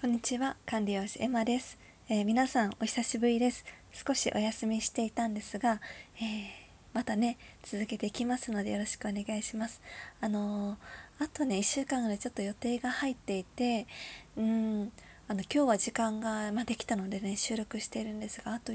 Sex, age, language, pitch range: female, 20-39, Japanese, 205-240 Hz